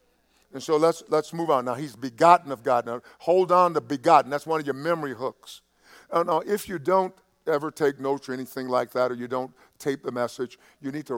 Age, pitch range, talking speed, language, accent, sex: 50-69, 135-170 Hz, 225 wpm, English, American, male